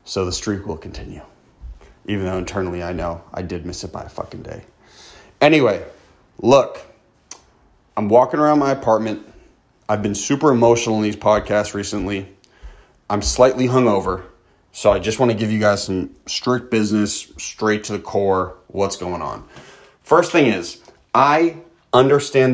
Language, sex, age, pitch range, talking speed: English, male, 30-49, 95-115 Hz, 155 wpm